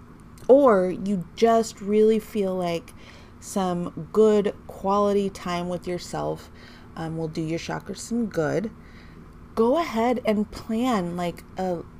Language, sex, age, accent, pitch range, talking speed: English, female, 30-49, American, 160-200 Hz, 125 wpm